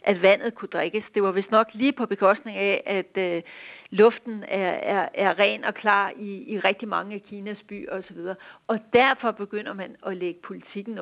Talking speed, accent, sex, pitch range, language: 200 wpm, native, female, 205-250 Hz, Danish